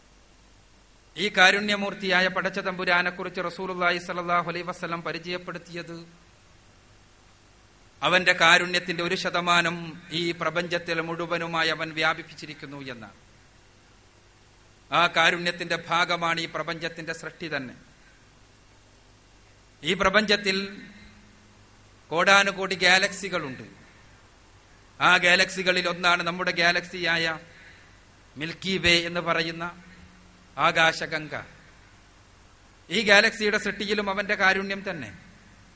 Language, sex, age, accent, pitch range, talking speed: Malayalam, male, 40-59, native, 125-180 Hz, 75 wpm